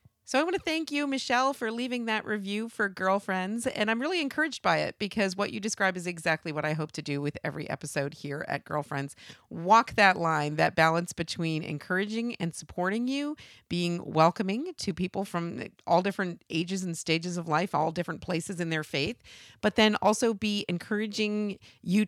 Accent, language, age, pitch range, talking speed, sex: American, English, 40-59, 155-220 Hz, 190 wpm, female